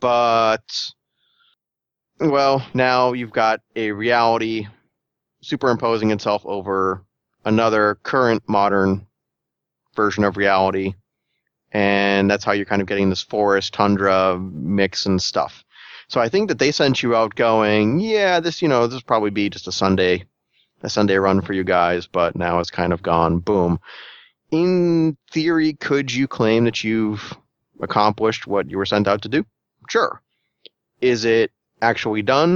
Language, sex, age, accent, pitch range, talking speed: English, male, 30-49, American, 95-115 Hz, 150 wpm